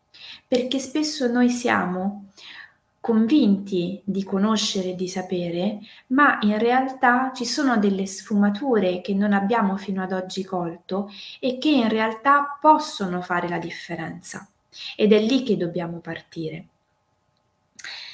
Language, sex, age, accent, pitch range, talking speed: Italian, female, 20-39, native, 185-235 Hz, 125 wpm